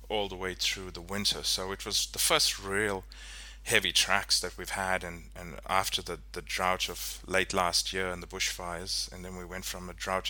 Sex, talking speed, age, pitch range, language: male, 215 wpm, 30-49, 85-95 Hz, English